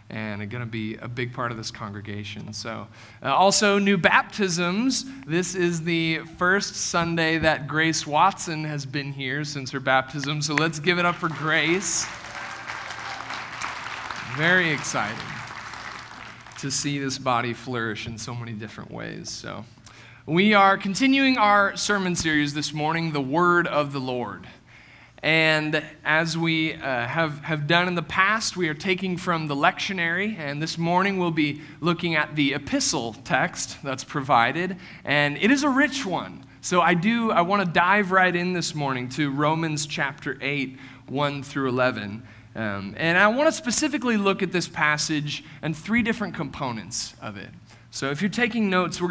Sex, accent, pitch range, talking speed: male, American, 130-180 Hz, 165 wpm